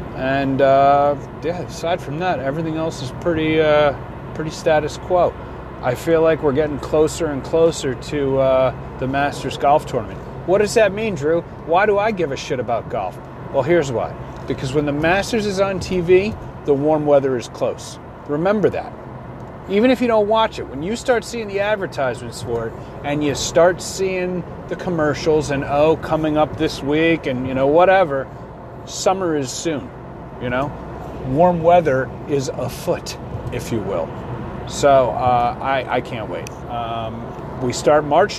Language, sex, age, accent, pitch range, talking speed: English, male, 30-49, American, 130-170 Hz, 170 wpm